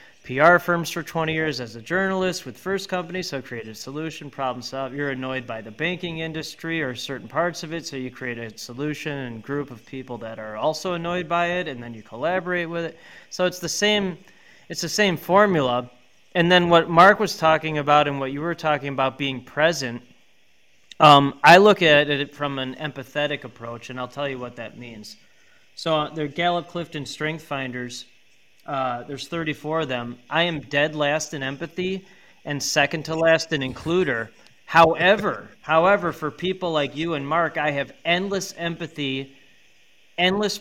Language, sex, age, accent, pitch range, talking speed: English, male, 30-49, American, 130-170 Hz, 185 wpm